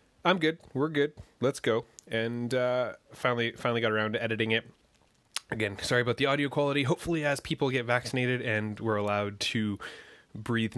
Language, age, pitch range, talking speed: English, 20-39, 95-115 Hz, 175 wpm